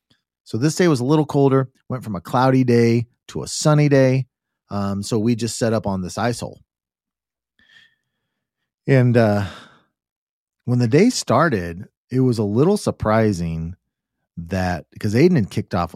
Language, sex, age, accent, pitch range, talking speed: English, male, 30-49, American, 95-120 Hz, 160 wpm